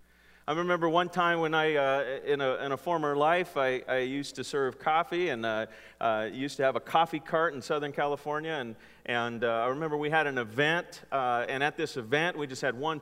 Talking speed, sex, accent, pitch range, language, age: 230 wpm, male, American, 135-185 Hz, English, 40-59